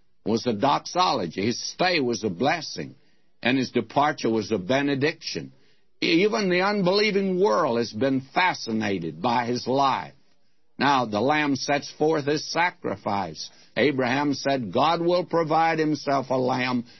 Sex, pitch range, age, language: male, 130-165 Hz, 60-79, English